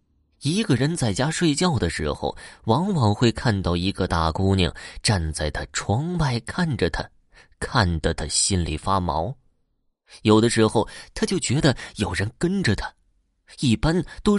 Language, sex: Chinese, male